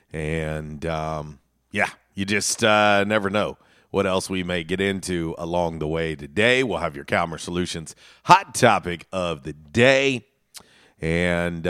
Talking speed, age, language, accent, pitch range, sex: 150 wpm, 40-59, English, American, 80-110 Hz, male